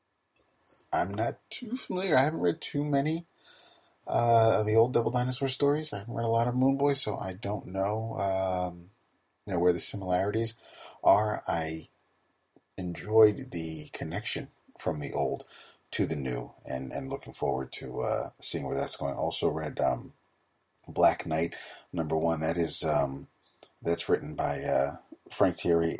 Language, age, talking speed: English, 40-59, 155 wpm